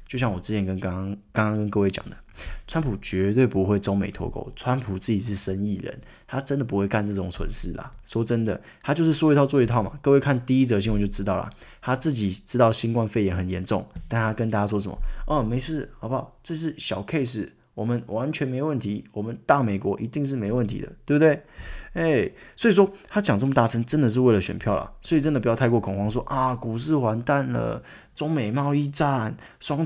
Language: Chinese